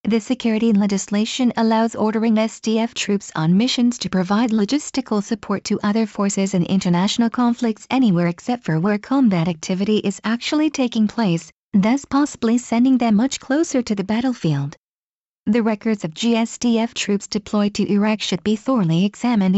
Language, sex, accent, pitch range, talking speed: English, female, American, 195-235 Hz, 155 wpm